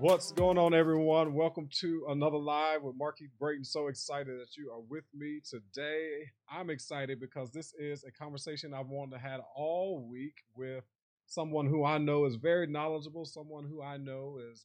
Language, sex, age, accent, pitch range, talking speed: English, male, 30-49, American, 135-160 Hz, 185 wpm